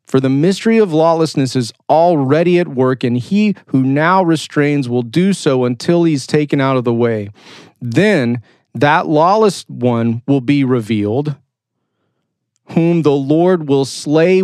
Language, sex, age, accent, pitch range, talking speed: English, male, 40-59, American, 125-155 Hz, 150 wpm